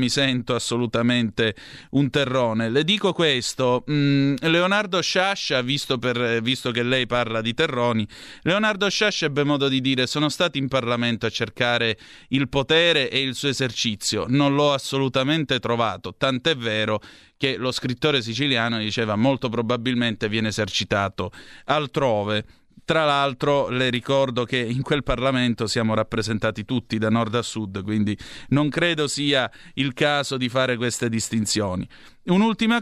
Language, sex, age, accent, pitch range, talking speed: Italian, male, 30-49, native, 115-150 Hz, 140 wpm